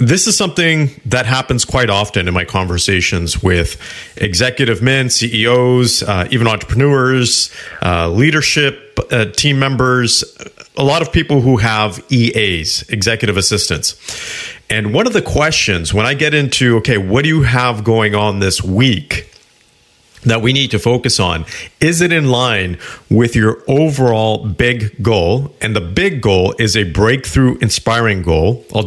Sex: male